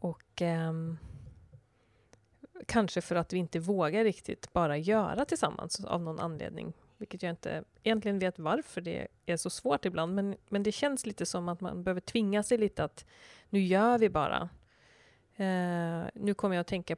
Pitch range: 170-210 Hz